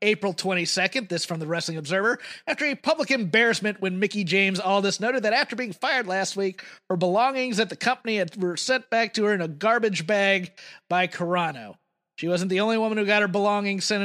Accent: American